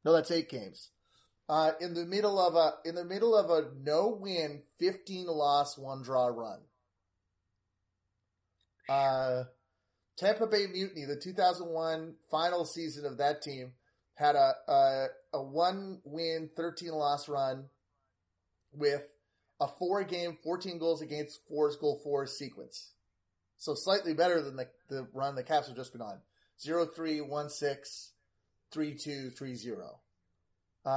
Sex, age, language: male, 30-49, English